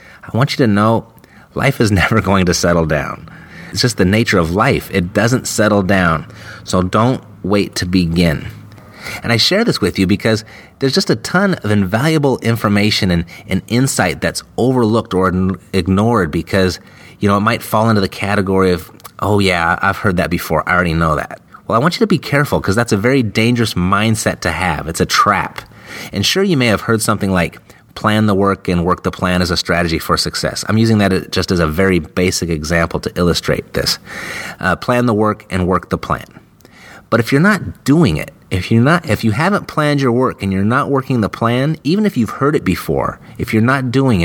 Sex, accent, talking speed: male, American, 210 wpm